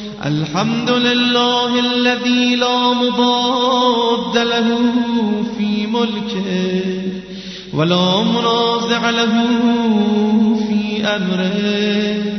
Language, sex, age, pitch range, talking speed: Persian, male, 30-49, 210-240 Hz, 65 wpm